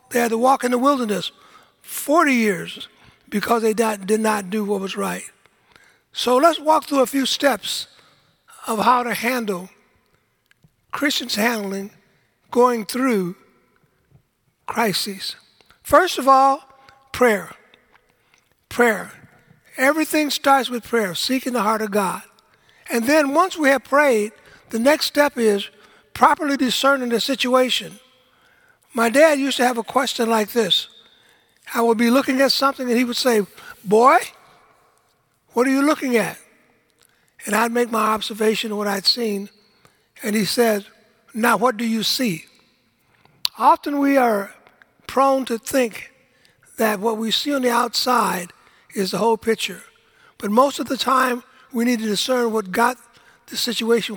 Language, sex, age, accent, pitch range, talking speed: English, male, 60-79, American, 220-270 Hz, 145 wpm